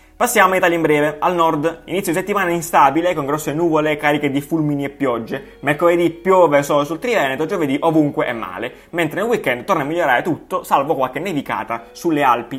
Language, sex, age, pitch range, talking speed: Italian, male, 20-39, 145-185 Hz, 185 wpm